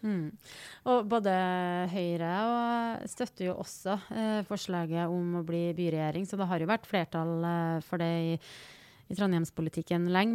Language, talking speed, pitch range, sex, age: English, 150 wpm, 170-195 Hz, female, 30-49